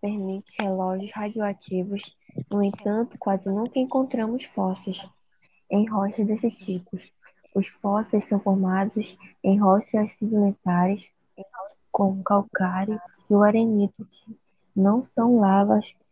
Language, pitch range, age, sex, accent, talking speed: Portuguese, 195-220 Hz, 20-39, female, Brazilian, 110 wpm